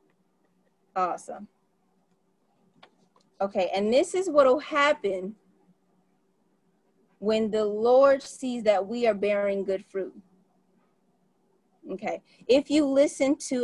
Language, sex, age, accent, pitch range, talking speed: English, female, 30-49, American, 195-265 Hz, 95 wpm